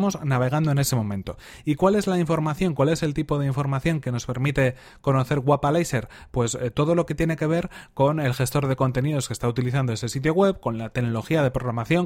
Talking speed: 220 wpm